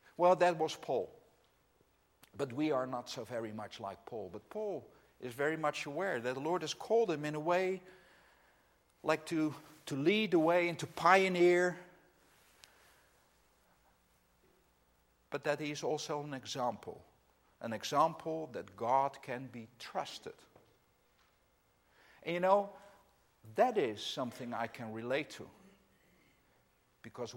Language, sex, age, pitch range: English, male, 50-69, 110-155 Hz